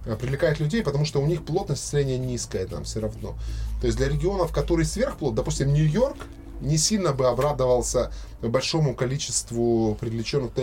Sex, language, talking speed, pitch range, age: male, Russian, 150 wpm, 110-145 Hz, 20-39